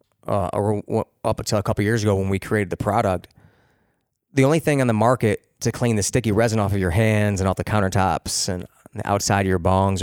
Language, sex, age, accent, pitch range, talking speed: English, male, 30-49, American, 100-120 Hz, 225 wpm